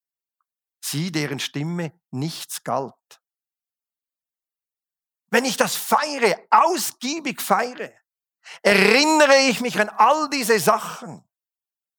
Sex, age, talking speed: male, 50-69, 90 wpm